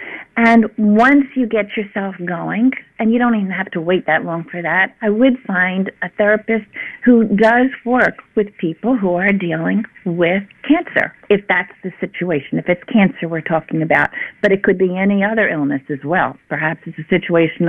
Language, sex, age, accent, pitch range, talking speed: English, female, 50-69, American, 175-215 Hz, 185 wpm